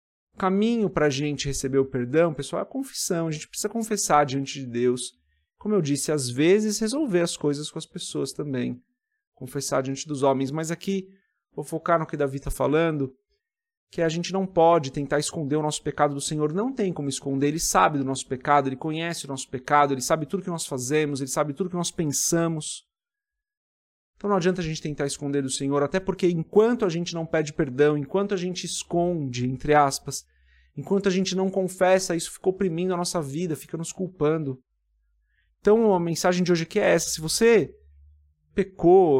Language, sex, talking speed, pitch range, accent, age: Portuguese, male, 200 wpm, 140-190 Hz, Brazilian, 30-49